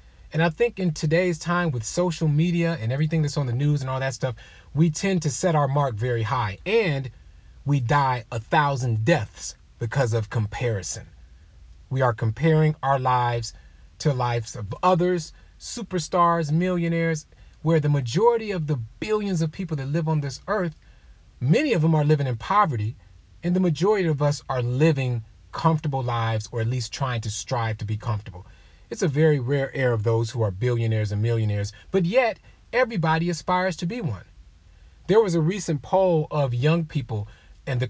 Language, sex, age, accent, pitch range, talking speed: English, male, 30-49, American, 115-165 Hz, 180 wpm